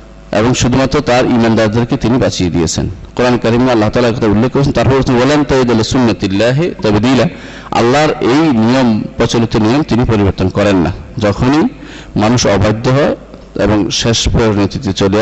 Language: Bengali